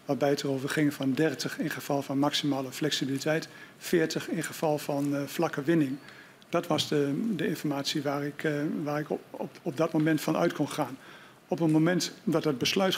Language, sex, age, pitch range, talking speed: Dutch, male, 60-79, 145-170 Hz, 200 wpm